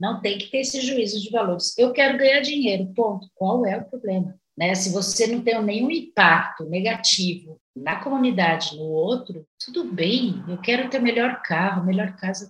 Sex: female